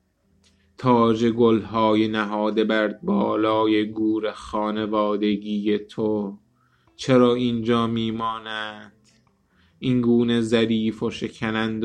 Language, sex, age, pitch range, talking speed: Persian, male, 20-39, 105-115 Hz, 75 wpm